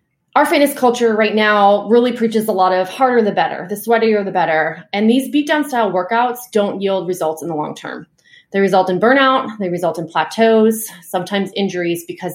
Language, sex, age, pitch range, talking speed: English, female, 20-39, 175-230 Hz, 195 wpm